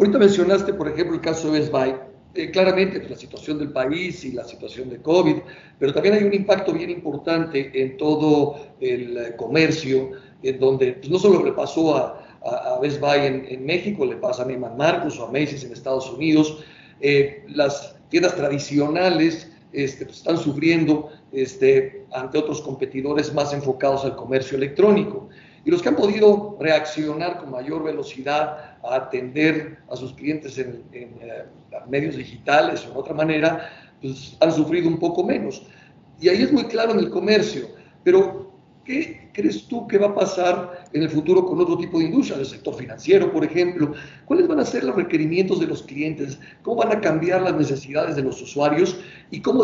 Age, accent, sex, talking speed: 50-69, Mexican, male, 185 wpm